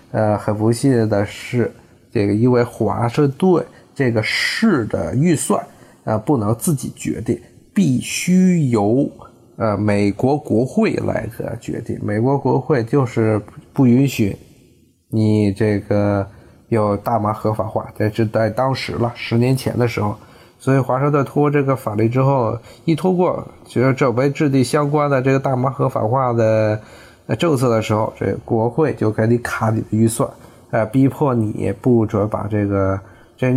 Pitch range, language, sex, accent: 105-130 Hz, Chinese, male, native